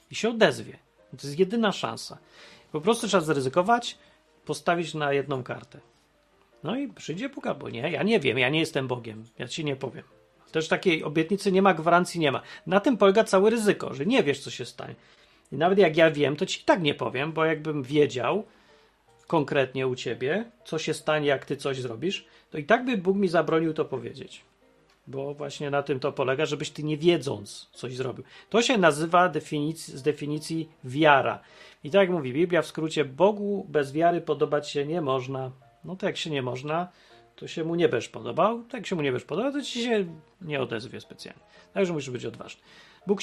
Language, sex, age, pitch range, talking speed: Polish, male, 40-59, 140-185 Hz, 205 wpm